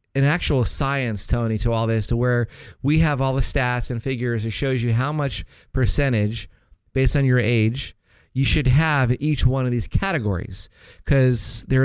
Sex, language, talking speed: male, English, 180 wpm